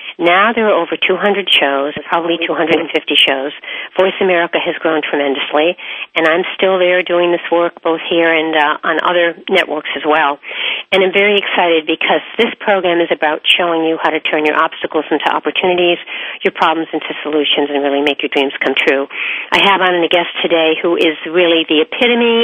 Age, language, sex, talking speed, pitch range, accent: 50-69, English, female, 185 wpm, 155-190 Hz, American